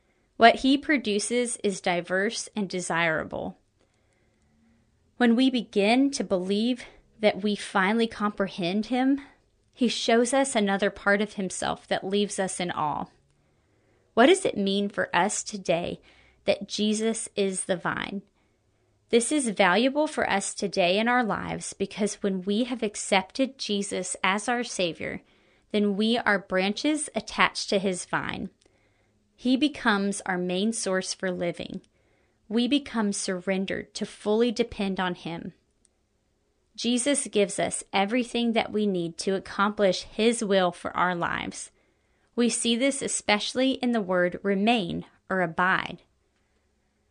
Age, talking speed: 30-49, 135 wpm